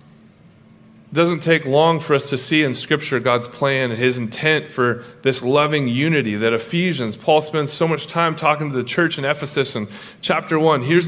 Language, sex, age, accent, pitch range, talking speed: English, male, 30-49, American, 140-175 Hz, 195 wpm